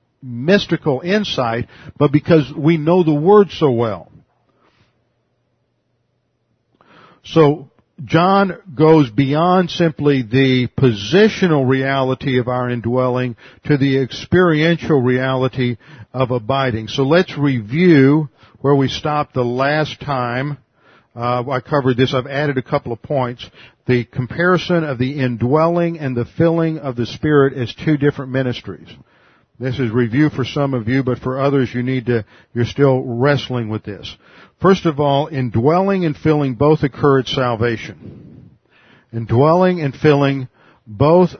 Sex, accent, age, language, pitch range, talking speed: male, American, 50-69, English, 120-150 Hz, 135 wpm